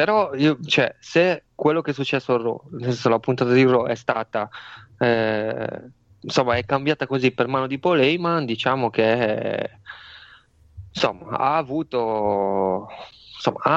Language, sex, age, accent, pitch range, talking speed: Italian, male, 20-39, native, 110-135 Hz, 130 wpm